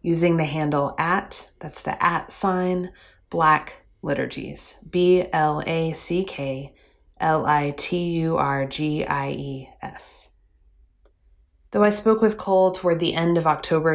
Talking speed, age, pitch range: 90 wpm, 30-49, 135-170 Hz